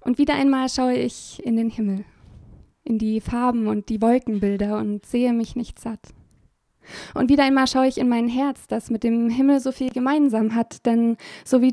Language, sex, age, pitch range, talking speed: German, female, 20-39, 225-260 Hz, 195 wpm